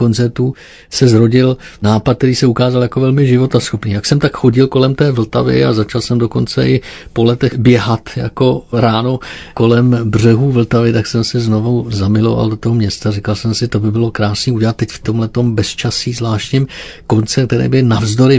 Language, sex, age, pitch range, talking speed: Czech, male, 50-69, 110-125 Hz, 185 wpm